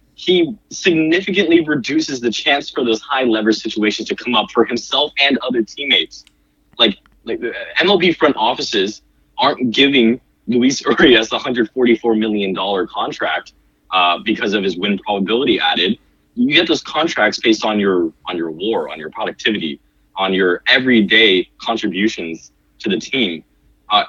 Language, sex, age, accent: English, male, 20-39, American